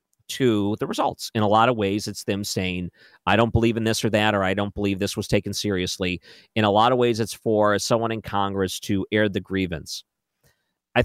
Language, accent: English, American